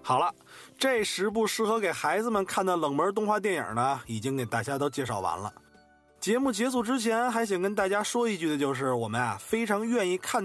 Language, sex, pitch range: Chinese, male, 150-235 Hz